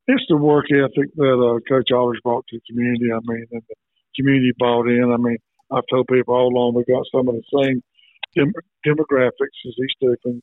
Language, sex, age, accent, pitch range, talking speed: English, male, 50-69, American, 120-130 Hz, 215 wpm